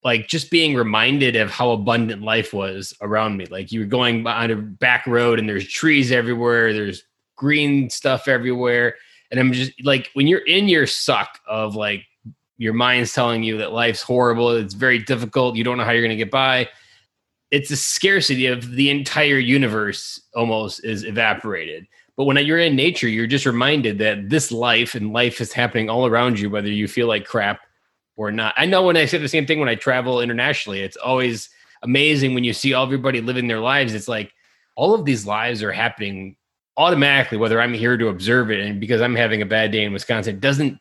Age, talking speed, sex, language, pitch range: 20-39, 205 wpm, male, English, 110-135 Hz